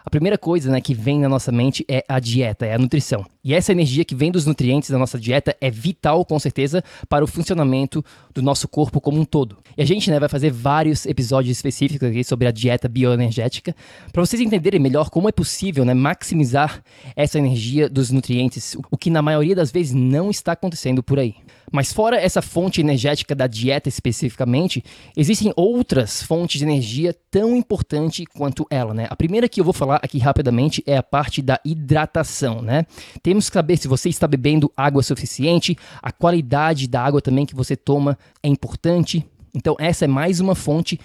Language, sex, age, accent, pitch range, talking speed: Portuguese, male, 20-39, Brazilian, 130-170 Hz, 195 wpm